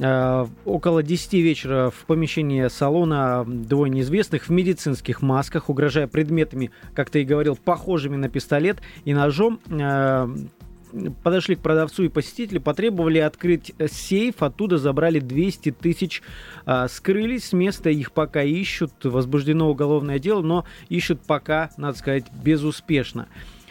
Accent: native